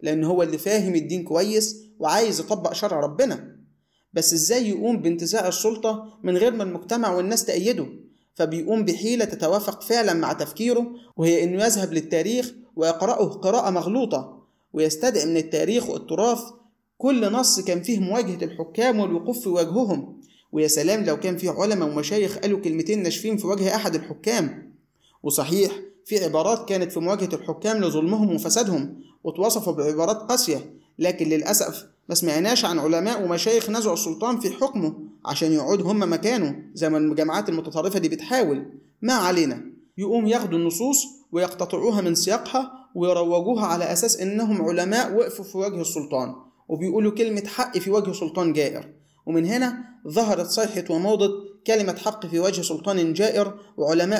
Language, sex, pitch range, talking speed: Arabic, male, 165-225 Hz, 145 wpm